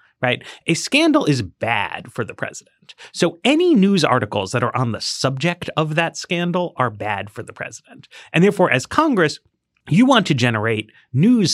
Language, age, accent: English, 30-49, American